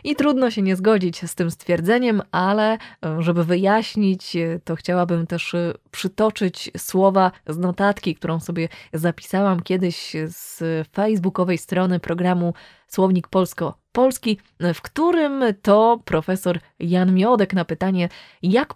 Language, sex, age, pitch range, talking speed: Polish, female, 20-39, 170-215 Hz, 120 wpm